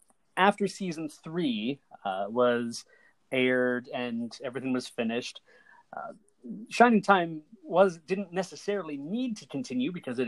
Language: English